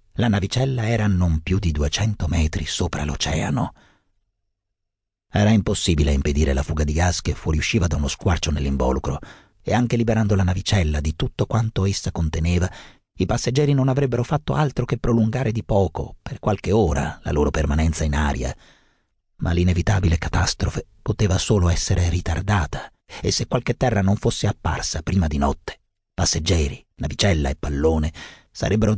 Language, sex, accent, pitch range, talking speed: Italian, male, native, 85-110 Hz, 155 wpm